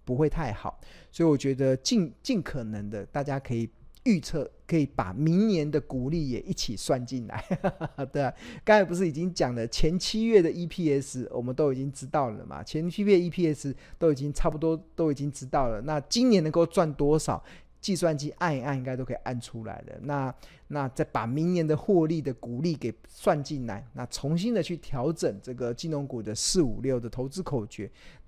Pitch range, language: 115-160 Hz, Chinese